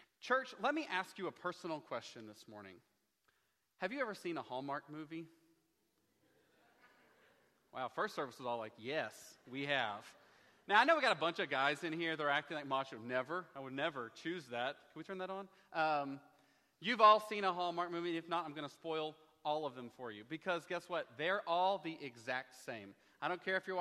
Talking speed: 210 wpm